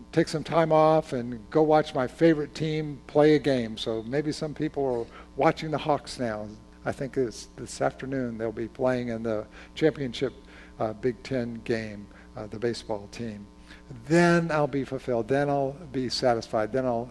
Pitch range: 120-155 Hz